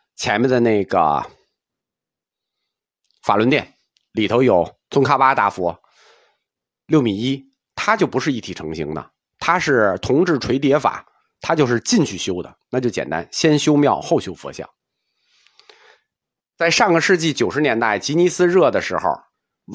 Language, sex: Chinese, male